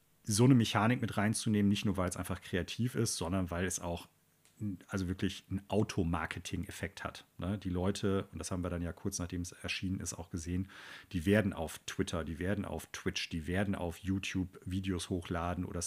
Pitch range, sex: 90-105 Hz, male